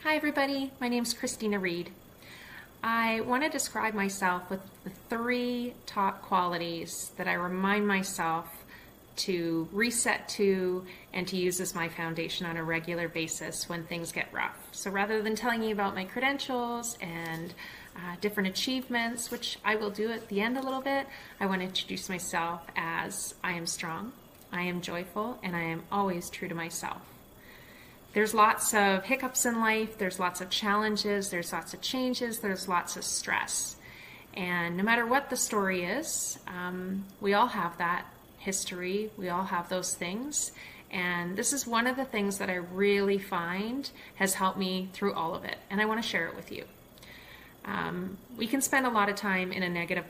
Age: 30-49